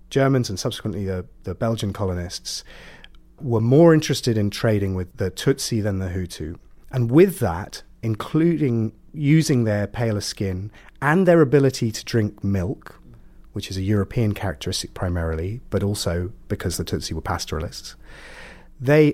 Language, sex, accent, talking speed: English, male, British, 145 wpm